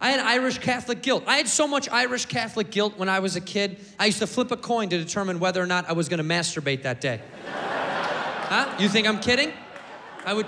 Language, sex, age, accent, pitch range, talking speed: English, male, 20-39, American, 170-235 Hz, 240 wpm